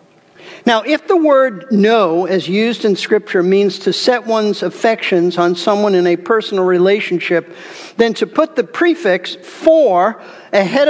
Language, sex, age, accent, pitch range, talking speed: English, male, 50-69, American, 190-240 Hz, 150 wpm